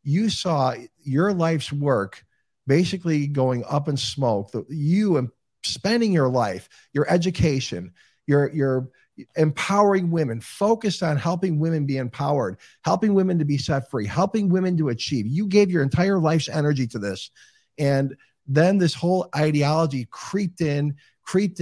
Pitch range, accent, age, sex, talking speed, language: 130-170 Hz, American, 50-69, male, 145 wpm, English